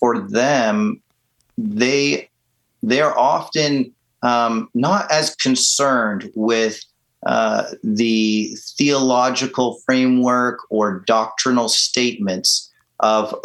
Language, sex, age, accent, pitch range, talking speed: English, male, 30-49, American, 110-130 Hz, 85 wpm